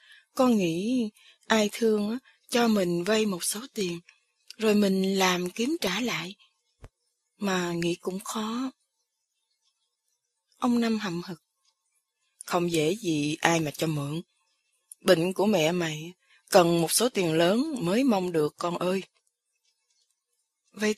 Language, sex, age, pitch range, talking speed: Vietnamese, female, 20-39, 175-230 Hz, 130 wpm